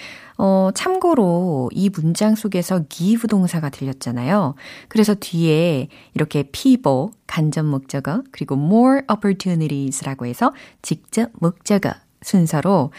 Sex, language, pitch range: female, Korean, 155-240 Hz